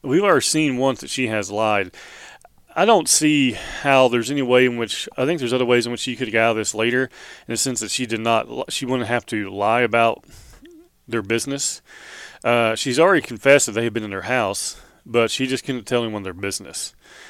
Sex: male